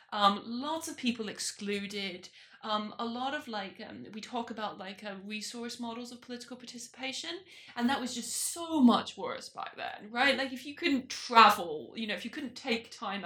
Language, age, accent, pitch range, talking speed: English, 20-39, British, 210-255 Hz, 195 wpm